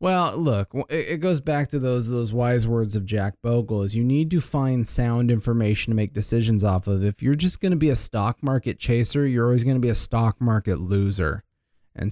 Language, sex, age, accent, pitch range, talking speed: English, male, 20-39, American, 110-150 Hz, 225 wpm